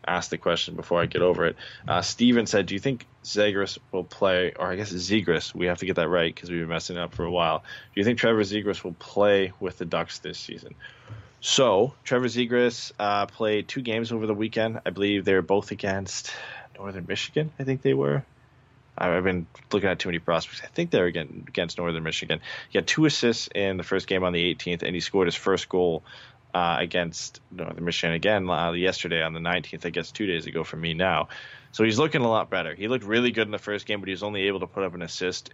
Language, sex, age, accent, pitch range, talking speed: English, male, 20-39, American, 90-110 Hz, 245 wpm